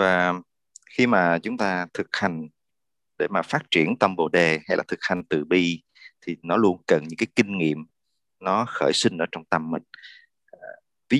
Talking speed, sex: 195 wpm, male